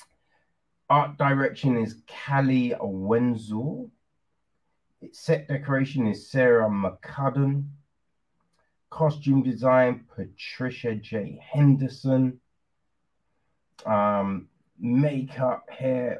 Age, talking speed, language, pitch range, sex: 30-49, 65 wpm, English, 110-145 Hz, male